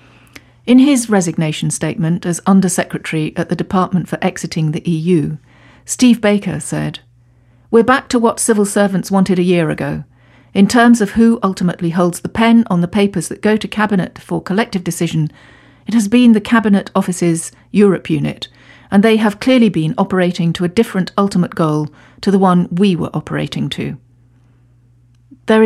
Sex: female